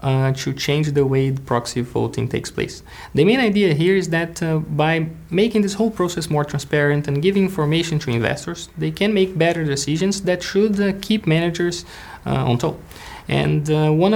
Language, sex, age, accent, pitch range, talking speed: English, male, 20-39, Brazilian, 150-190 Hz, 185 wpm